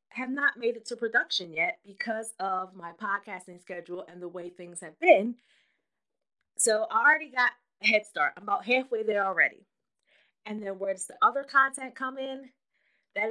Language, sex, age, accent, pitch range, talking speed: English, female, 20-39, American, 180-270 Hz, 180 wpm